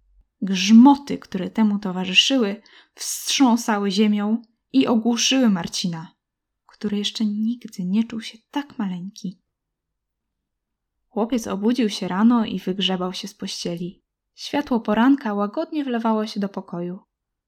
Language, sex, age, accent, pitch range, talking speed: Polish, female, 10-29, native, 200-255 Hz, 115 wpm